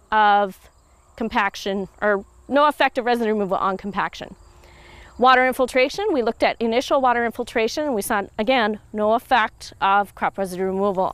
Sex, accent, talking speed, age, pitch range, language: female, American, 150 wpm, 30-49, 210-280 Hz, English